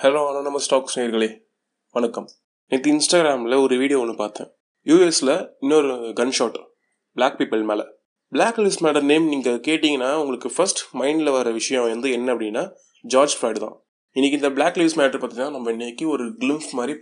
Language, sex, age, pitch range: Tamil, male, 20-39, 120-160 Hz